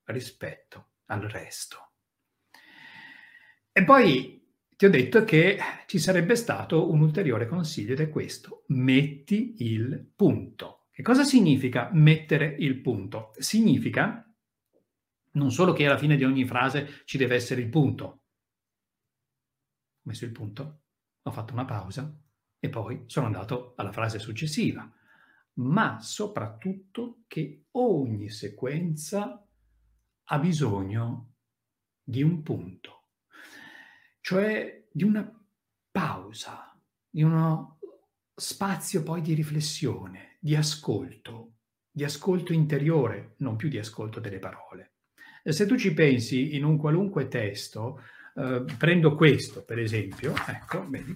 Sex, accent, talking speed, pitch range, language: male, native, 120 wpm, 120-170 Hz, Italian